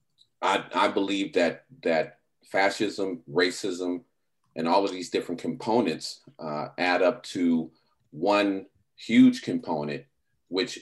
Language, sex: English, male